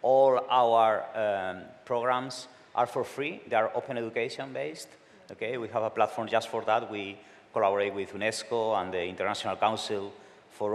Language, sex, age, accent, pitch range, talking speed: English, male, 30-49, Spanish, 105-125 Hz, 155 wpm